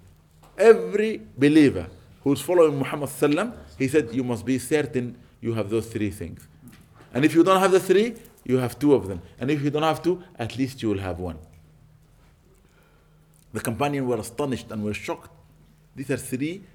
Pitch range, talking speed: 110-160 Hz, 185 wpm